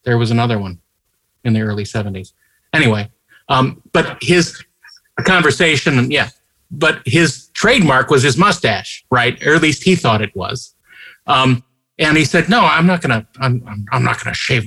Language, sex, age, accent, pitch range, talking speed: English, male, 50-69, American, 115-155 Hz, 170 wpm